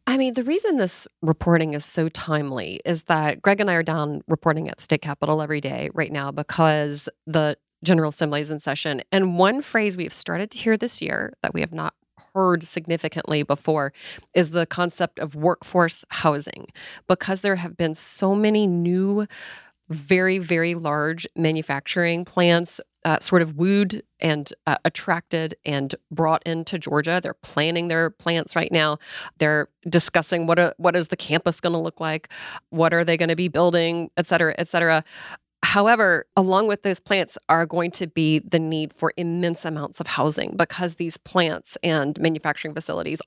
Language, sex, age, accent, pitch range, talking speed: English, female, 30-49, American, 160-185 Hz, 175 wpm